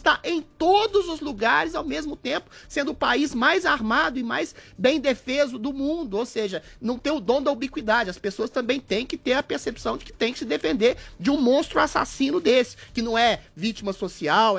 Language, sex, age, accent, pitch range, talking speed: Portuguese, male, 30-49, Brazilian, 195-260 Hz, 210 wpm